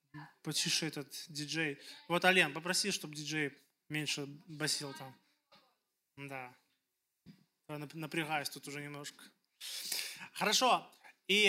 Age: 20-39